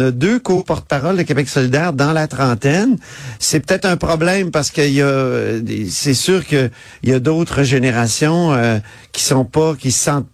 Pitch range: 135-190 Hz